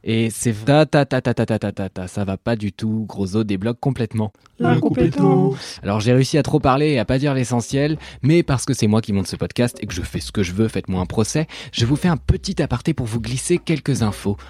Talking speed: 250 wpm